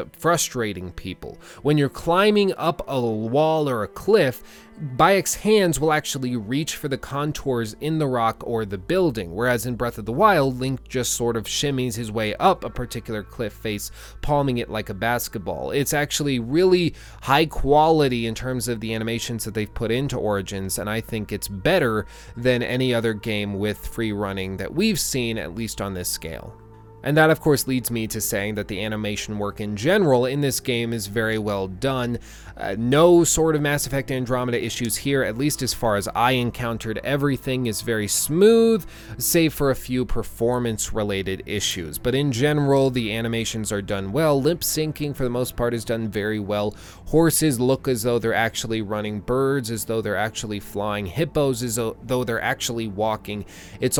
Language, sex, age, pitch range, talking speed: English, male, 30-49, 110-140 Hz, 190 wpm